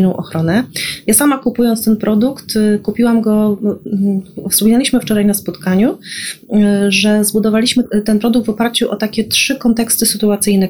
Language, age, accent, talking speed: Polish, 30-49, native, 130 wpm